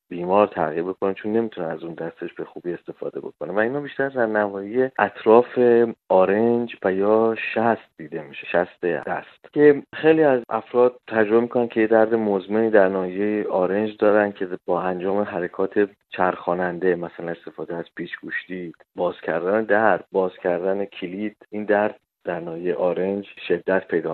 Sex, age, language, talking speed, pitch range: male, 30-49, Persian, 150 wpm, 95-120 Hz